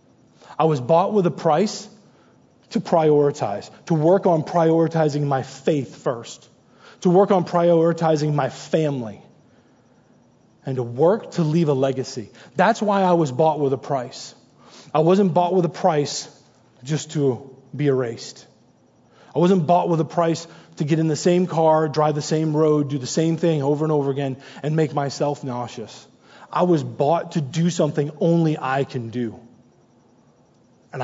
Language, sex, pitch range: English, male, 130-165 Hz